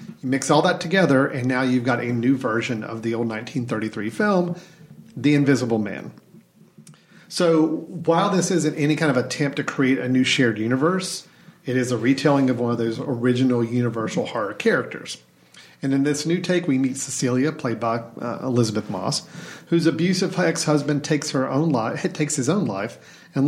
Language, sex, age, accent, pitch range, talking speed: English, male, 40-59, American, 125-160 Hz, 185 wpm